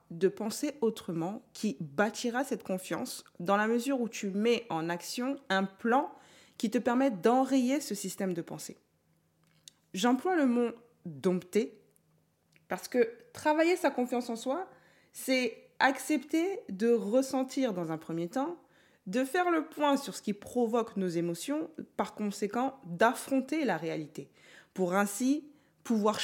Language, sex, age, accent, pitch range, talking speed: French, female, 20-39, French, 185-260 Hz, 140 wpm